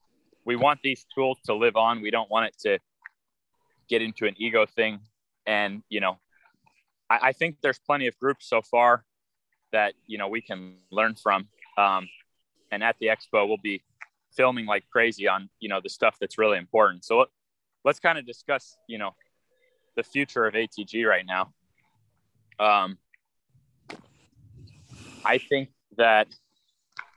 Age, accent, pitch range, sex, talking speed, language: 20-39, American, 105-130 Hz, male, 155 wpm, English